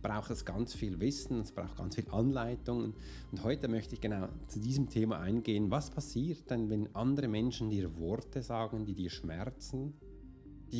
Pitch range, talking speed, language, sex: 95-135 Hz, 180 wpm, German, male